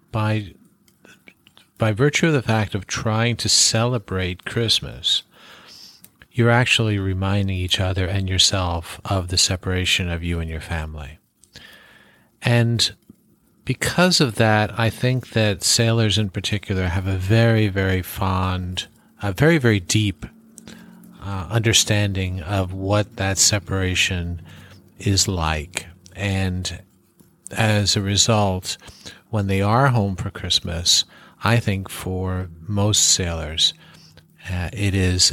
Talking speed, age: 120 wpm, 50-69